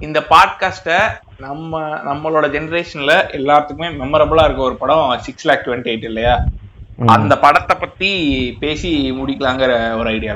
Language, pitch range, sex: Tamil, 125-155 Hz, male